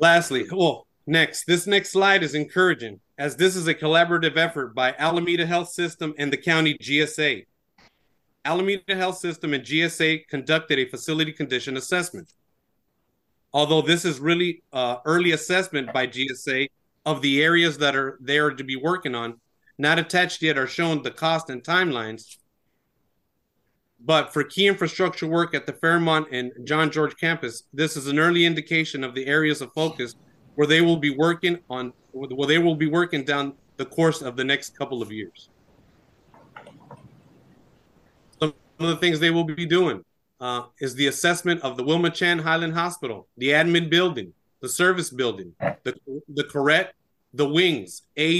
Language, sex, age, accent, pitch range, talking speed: English, male, 30-49, American, 140-170 Hz, 165 wpm